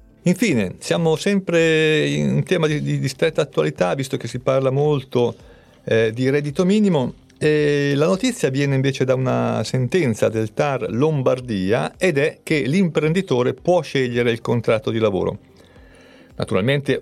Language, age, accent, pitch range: Italian, 50-69, native, 115-145 Hz